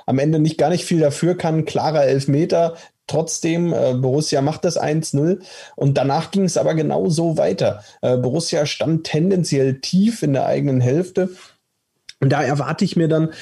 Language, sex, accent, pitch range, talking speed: German, male, German, 130-160 Hz, 175 wpm